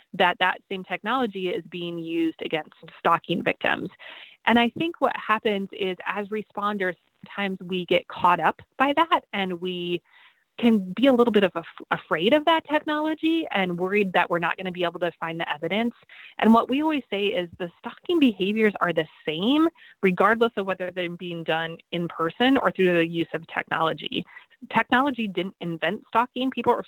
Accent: American